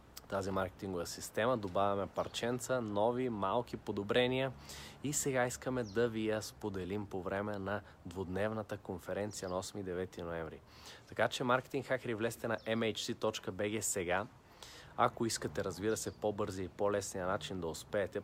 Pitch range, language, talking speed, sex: 100-120 Hz, Bulgarian, 140 wpm, male